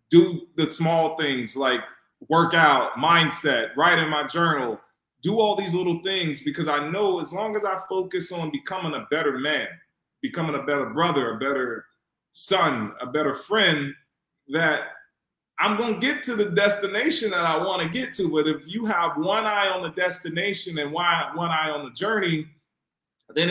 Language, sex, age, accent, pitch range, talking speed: Spanish, male, 20-39, American, 150-185 Hz, 175 wpm